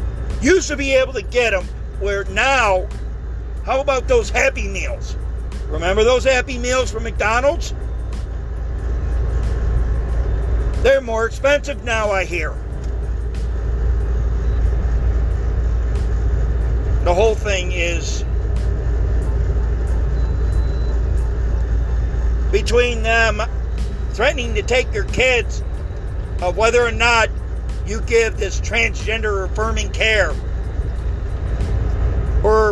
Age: 50-69